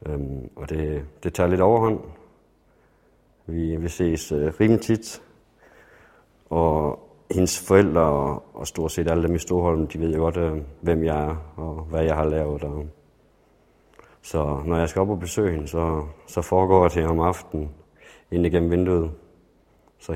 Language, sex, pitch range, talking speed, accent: Danish, male, 80-90 Hz, 160 wpm, native